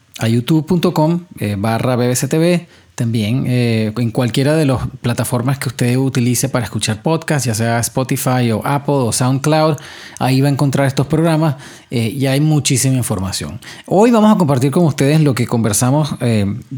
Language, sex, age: English, male, 30-49